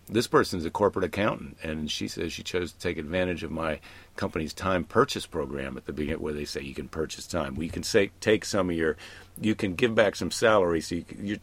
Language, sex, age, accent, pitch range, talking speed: English, male, 50-69, American, 80-105 Hz, 200 wpm